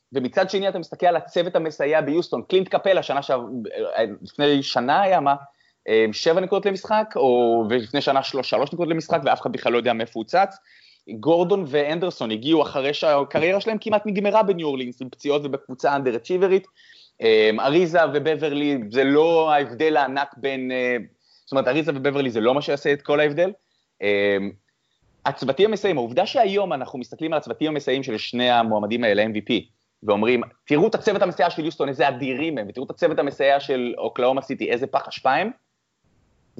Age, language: 20-39, Hebrew